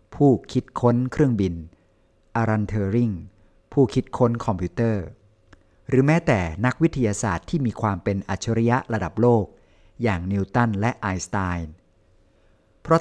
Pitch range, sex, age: 95-125 Hz, male, 60-79